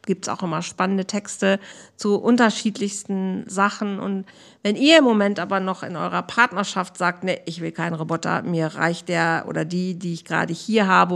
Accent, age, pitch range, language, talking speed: German, 50-69, 175-205 Hz, German, 190 wpm